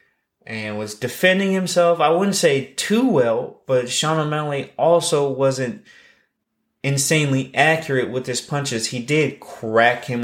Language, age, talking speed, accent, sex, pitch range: English, 20-39, 135 wpm, American, male, 110-140 Hz